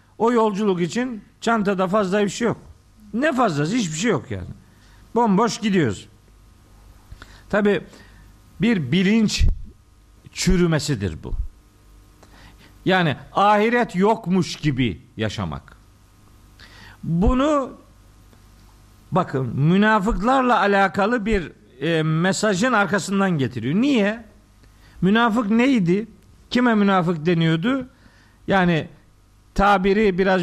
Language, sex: Turkish, male